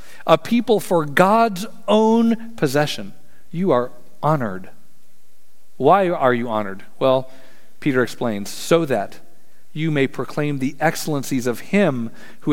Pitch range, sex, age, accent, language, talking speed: 145-215 Hz, male, 40-59, American, English, 125 wpm